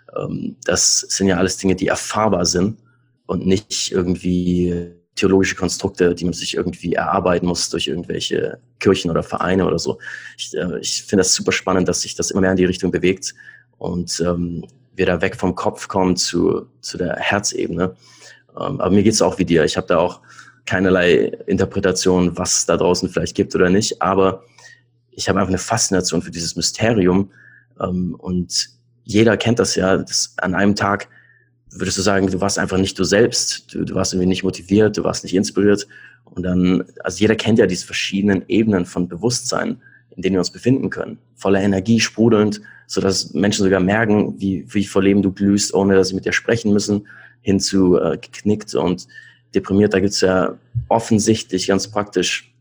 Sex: male